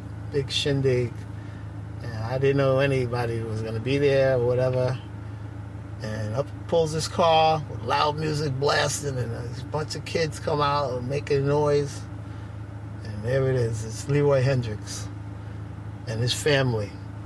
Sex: male